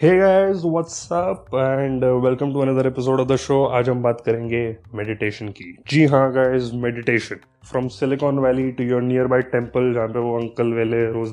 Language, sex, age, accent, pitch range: Hindi, male, 20-39, native, 120-145 Hz